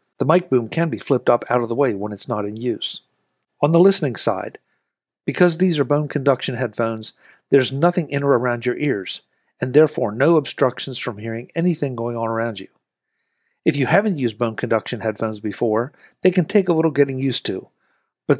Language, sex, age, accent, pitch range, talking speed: English, male, 50-69, American, 120-150 Hz, 200 wpm